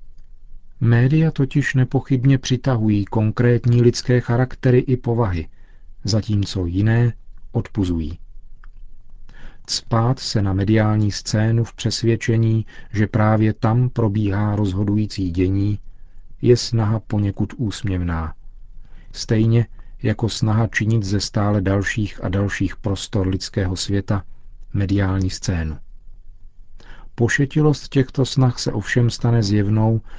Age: 40-59